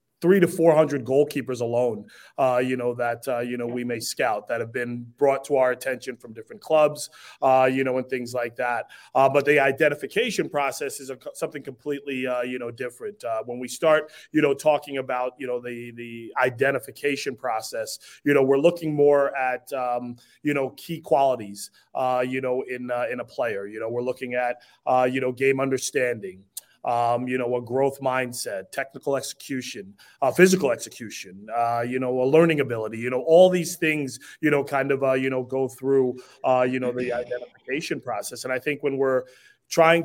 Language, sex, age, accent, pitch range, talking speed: English, male, 30-49, American, 125-145 Hz, 175 wpm